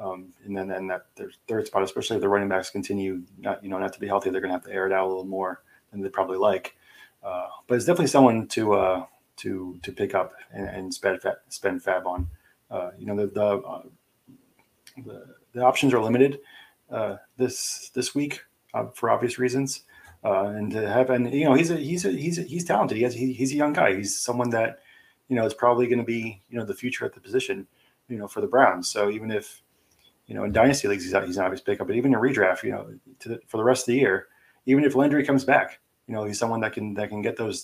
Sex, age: male, 30-49